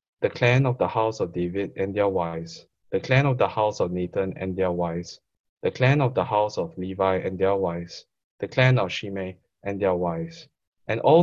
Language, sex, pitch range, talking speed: English, male, 95-135 Hz, 210 wpm